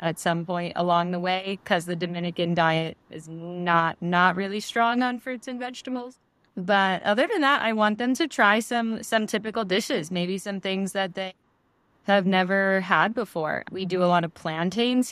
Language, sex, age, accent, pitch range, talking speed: English, female, 20-39, American, 170-200 Hz, 185 wpm